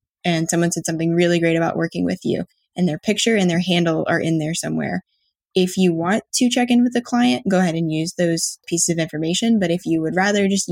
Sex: female